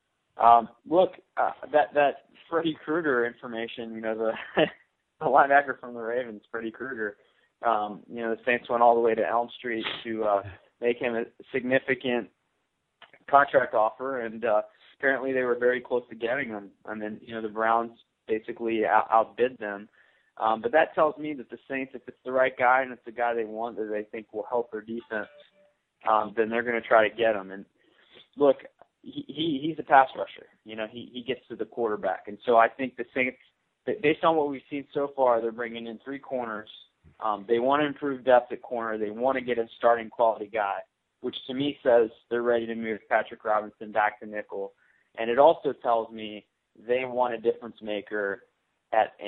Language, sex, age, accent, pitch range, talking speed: English, male, 20-39, American, 110-130 Hz, 205 wpm